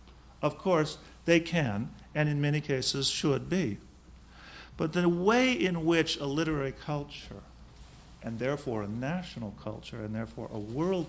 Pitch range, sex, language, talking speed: 100-155 Hz, male, English, 145 wpm